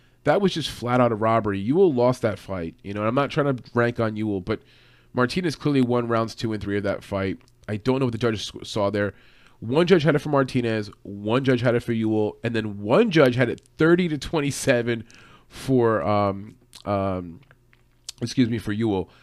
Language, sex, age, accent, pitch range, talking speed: English, male, 30-49, American, 110-130 Hz, 210 wpm